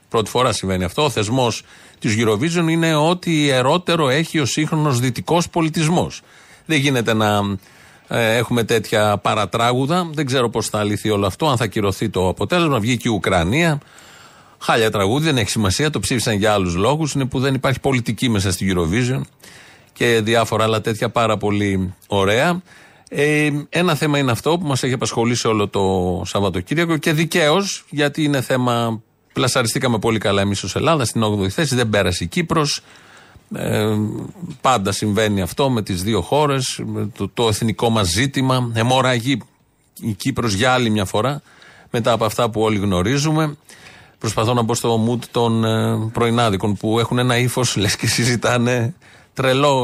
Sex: male